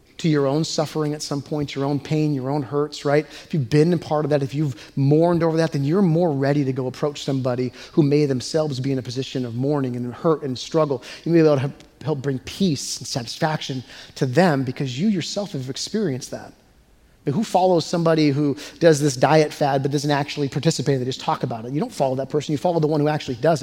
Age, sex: 30-49, male